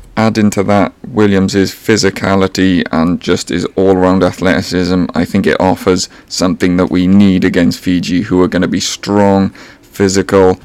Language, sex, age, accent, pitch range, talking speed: English, male, 30-49, British, 90-105 Hz, 150 wpm